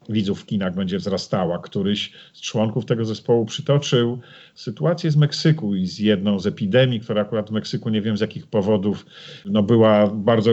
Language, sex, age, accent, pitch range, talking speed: Polish, male, 50-69, native, 105-155 Hz, 175 wpm